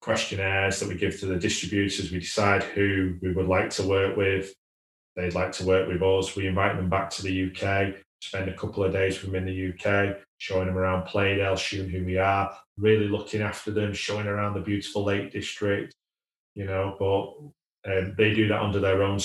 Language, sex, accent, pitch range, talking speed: English, male, British, 95-110 Hz, 210 wpm